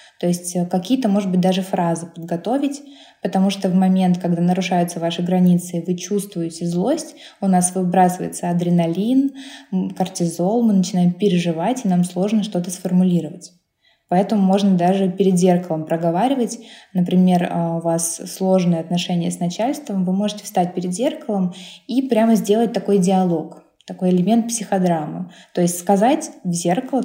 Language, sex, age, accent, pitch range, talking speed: Russian, female, 20-39, native, 180-215 Hz, 140 wpm